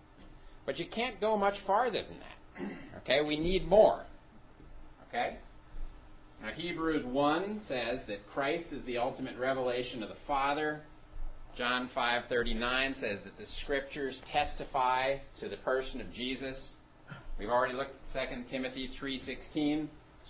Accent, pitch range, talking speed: American, 125-150 Hz, 135 wpm